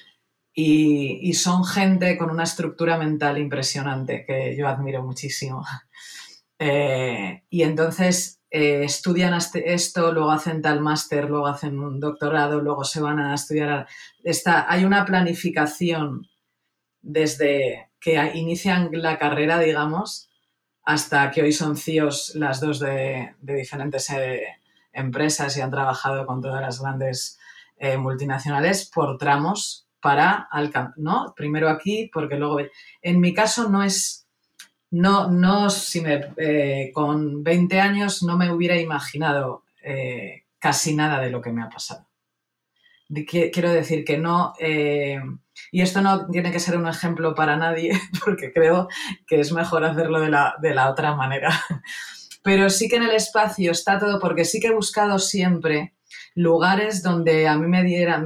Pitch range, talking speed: 145-175 Hz, 150 wpm